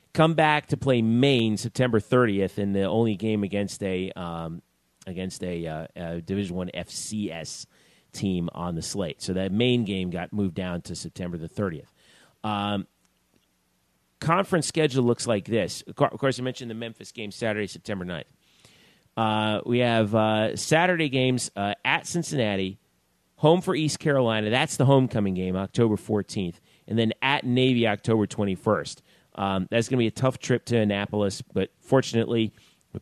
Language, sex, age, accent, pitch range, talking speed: English, male, 30-49, American, 100-130 Hz, 165 wpm